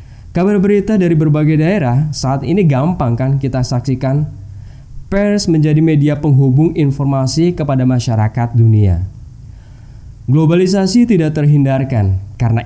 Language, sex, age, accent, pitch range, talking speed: Indonesian, male, 10-29, native, 115-155 Hz, 110 wpm